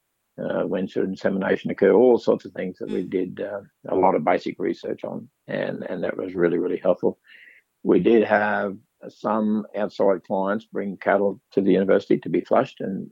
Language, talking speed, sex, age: English, 190 wpm, male, 60-79